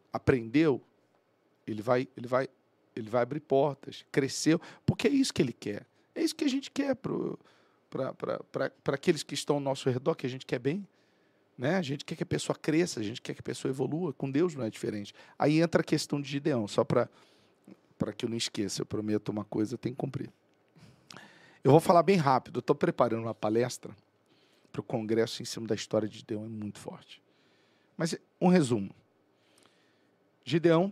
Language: Portuguese